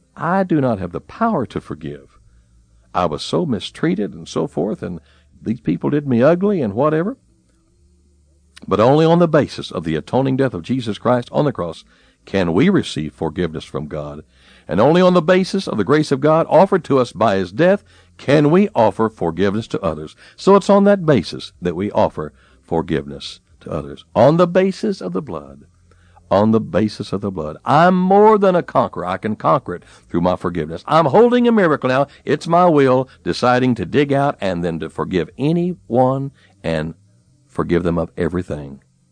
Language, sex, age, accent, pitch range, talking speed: English, male, 60-79, American, 80-130 Hz, 190 wpm